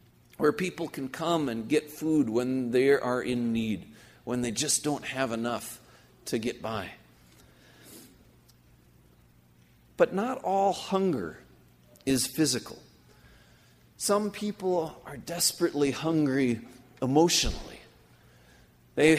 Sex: male